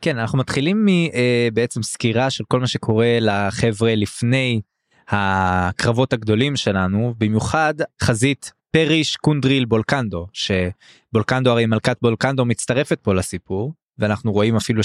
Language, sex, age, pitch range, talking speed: Hebrew, male, 20-39, 105-140 Hz, 120 wpm